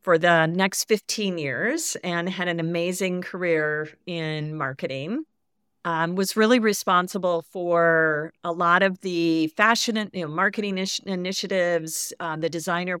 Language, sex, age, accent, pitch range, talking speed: English, female, 50-69, American, 160-185 Hz, 130 wpm